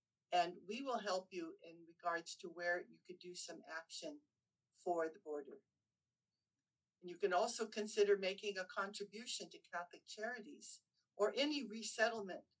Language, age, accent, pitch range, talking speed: English, 50-69, American, 175-220 Hz, 145 wpm